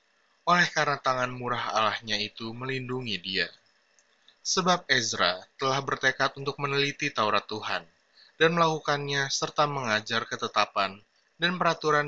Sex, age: male, 20-39